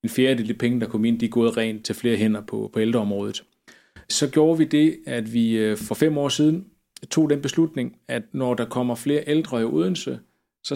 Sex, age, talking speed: male, 30-49, 220 wpm